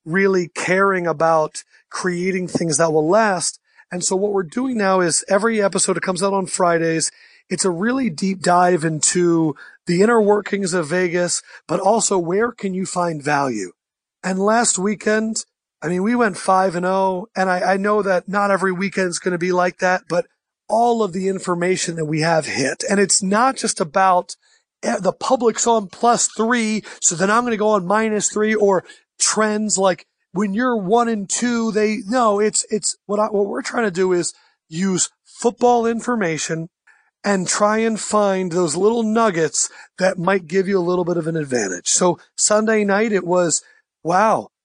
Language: English